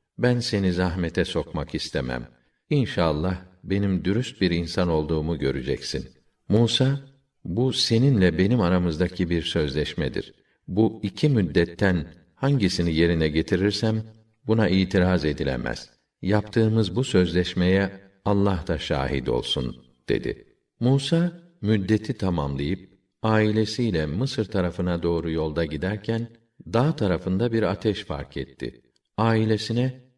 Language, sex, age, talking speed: Turkish, male, 50-69, 105 wpm